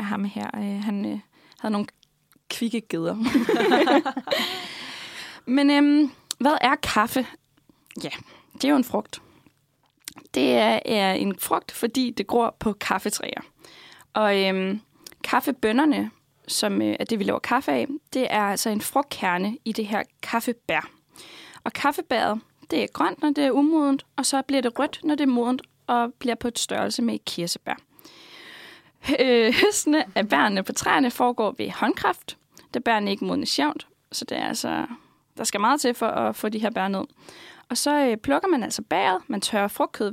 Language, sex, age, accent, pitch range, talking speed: Danish, female, 10-29, native, 210-280 Hz, 165 wpm